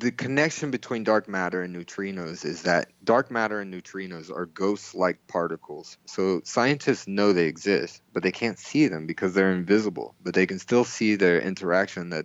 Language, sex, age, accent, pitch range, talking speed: English, male, 30-49, American, 90-105 Hz, 180 wpm